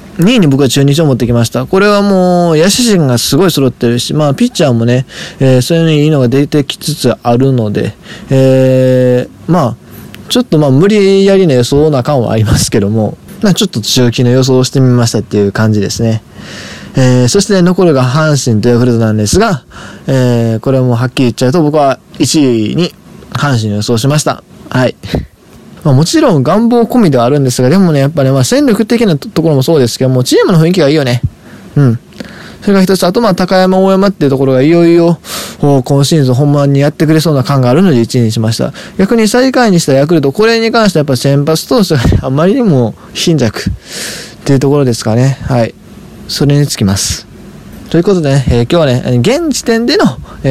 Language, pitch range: Japanese, 125-180 Hz